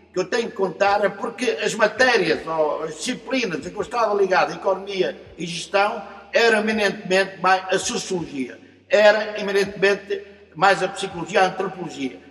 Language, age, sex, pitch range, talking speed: Portuguese, 60-79, male, 185-235 Hz, 155 wpm